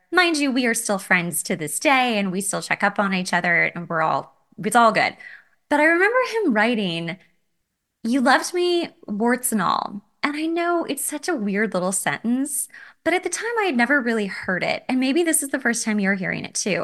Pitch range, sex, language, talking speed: 205-270 Hz, female, English, 230 wpm